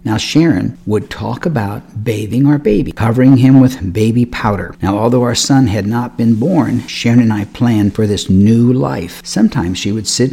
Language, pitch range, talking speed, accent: English, 105-130 Hz, 190 wpm, American